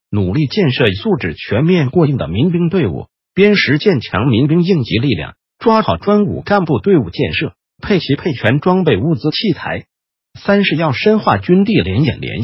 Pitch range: 120-180 Hz